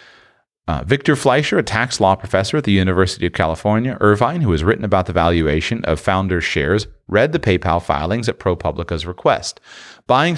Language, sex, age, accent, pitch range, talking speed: English, male, 30-49, American, 90-120 Hz, 175 wpm